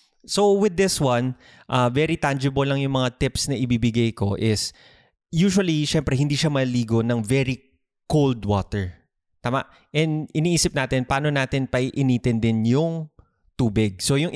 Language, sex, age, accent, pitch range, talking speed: Filipino, male, 20-39, native, 115-150 Hz, 155 wpm